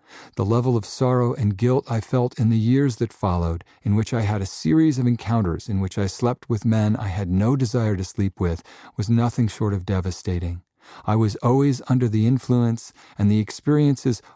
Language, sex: English, male